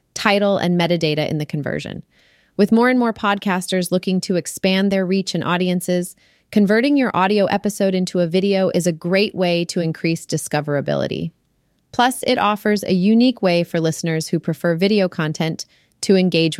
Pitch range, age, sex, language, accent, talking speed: 165-195 Hz, 30-49, female, English, American, 165 wpm